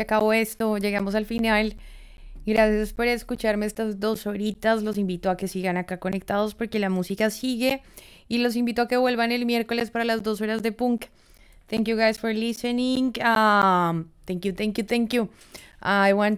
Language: English